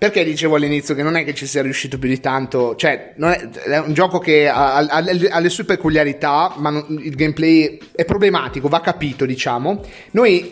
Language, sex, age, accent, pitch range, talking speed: Italian, male, 30-49, native, 140-180 Hz, 195 wpm